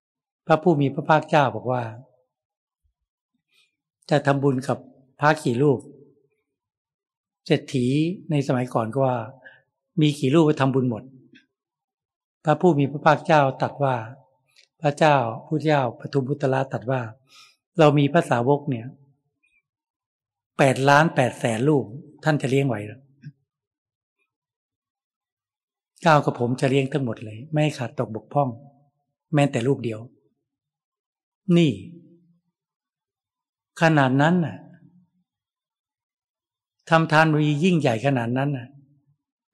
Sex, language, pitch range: male, Thai, 130-155 Hz